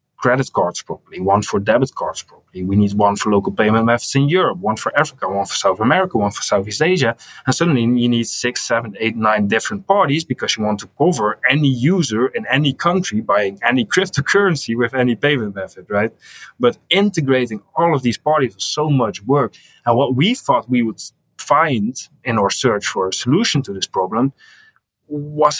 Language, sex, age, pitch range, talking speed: English, male, 30-49, 115-160 Hz, 195 wpm